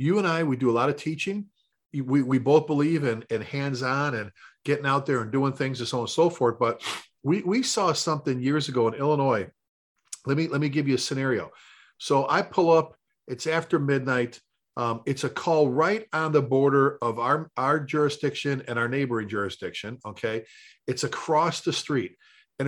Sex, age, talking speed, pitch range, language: male, 40-59, 200 wpm, 125-155 Hz, English